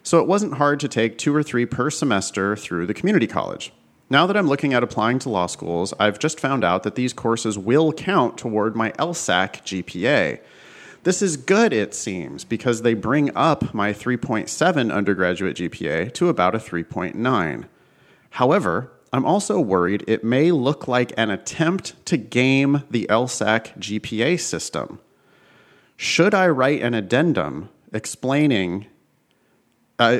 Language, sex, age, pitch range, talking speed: English, male, 30-49, 95-135 Hz, 155 wpm